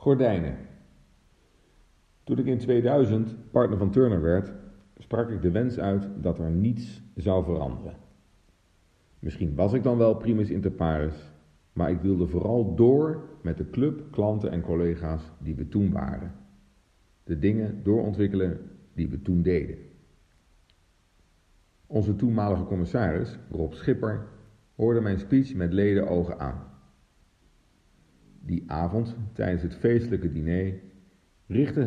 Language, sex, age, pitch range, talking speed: Dutch, male, 50-69, 85-110 Hz, 130 wpm